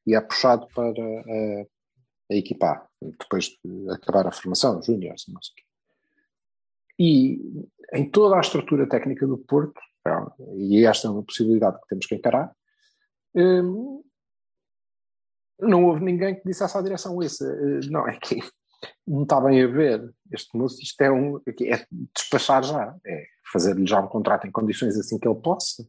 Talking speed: 155 wpm